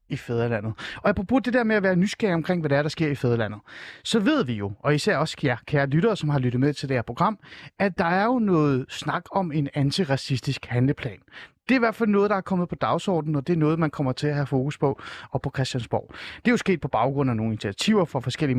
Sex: male